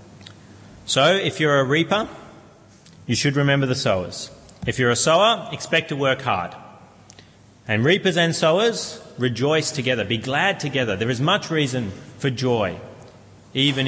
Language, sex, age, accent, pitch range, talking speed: English, male, 30-49, Australian, 105-140 Hz, 145 wpm